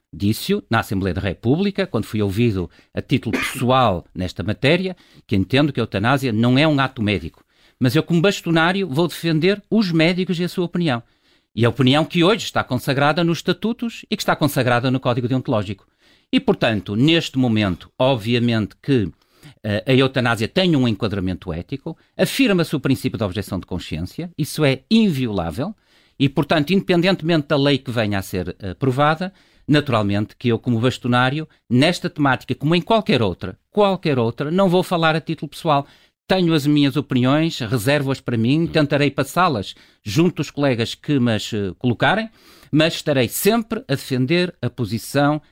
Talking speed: 165 wpm